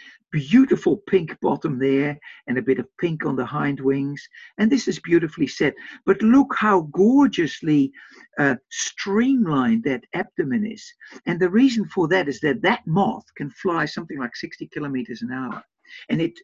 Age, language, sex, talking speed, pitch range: 60-79, English, male, 170 wpm, 150-235 Hz